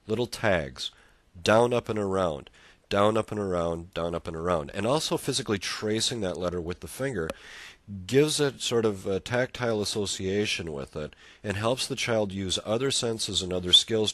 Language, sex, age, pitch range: English, male, 40-59, 85-110 Hz